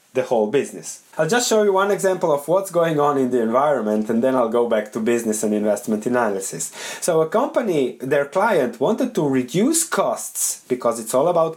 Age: 30-49